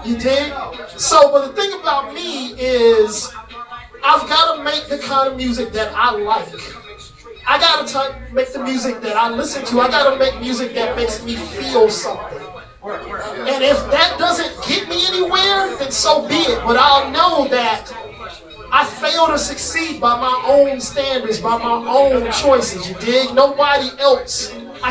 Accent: American